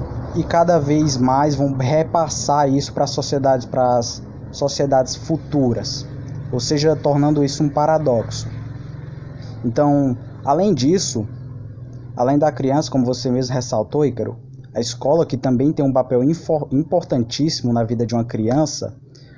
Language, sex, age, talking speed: Portuguese, male, 20-39, 130 wpm